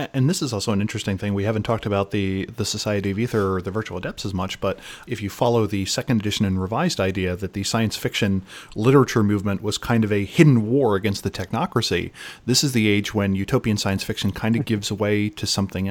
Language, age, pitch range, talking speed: English, 30-49, 100-120 Hz, 230 wpm